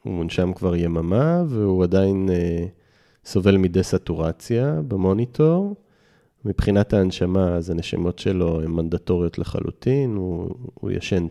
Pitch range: 90-115 Hz